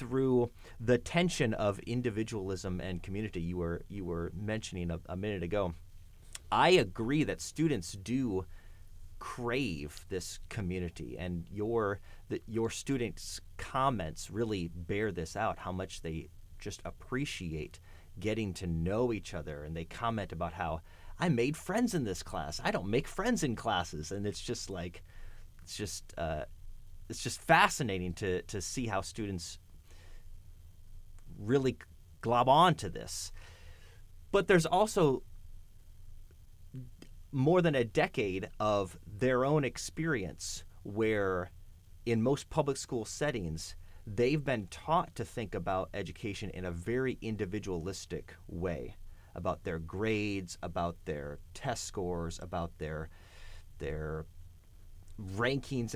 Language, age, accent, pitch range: English, 30-49, American, 85-110 Hz